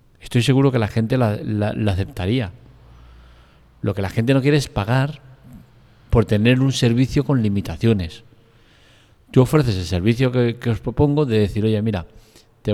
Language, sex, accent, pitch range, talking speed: Spanish, male, Spanish, 105-130 Hz, 170 wpm